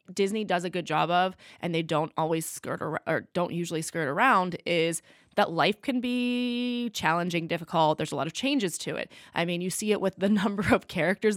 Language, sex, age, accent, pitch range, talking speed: English, female, 20-39, American, 160-190 Hz, 215 wpm